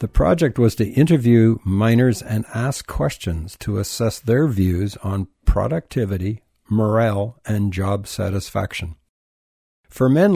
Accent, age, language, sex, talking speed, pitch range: American, 60-79, English, male, 120 wpm, 95-125 Hz